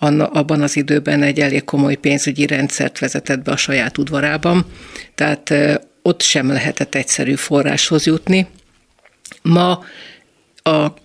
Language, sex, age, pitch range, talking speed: Hungarian, female, 50-69, 145-160 Hz, 120 wpm